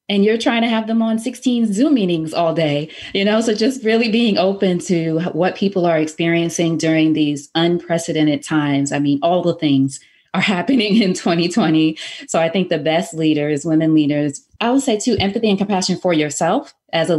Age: 20-39